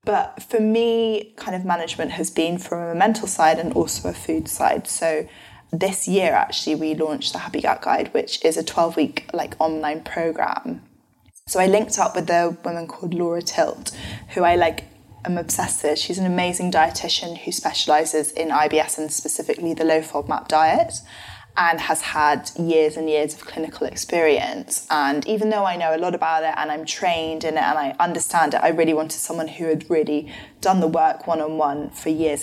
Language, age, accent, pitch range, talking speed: English, 10-29, British, 155-185 Hz, 190 wpm